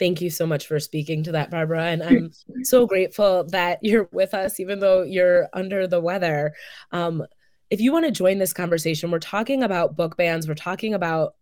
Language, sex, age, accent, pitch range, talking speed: English, female, 20-39, American, 155-190 Hz, 205 wpm